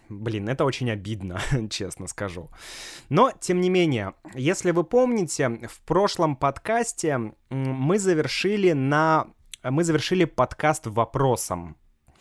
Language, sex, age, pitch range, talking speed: Russian, male, 20-39, 115-155 Hz, 105 wpm